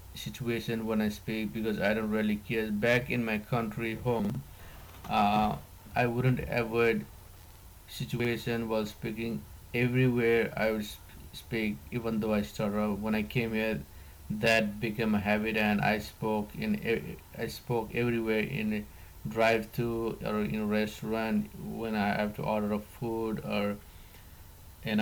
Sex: male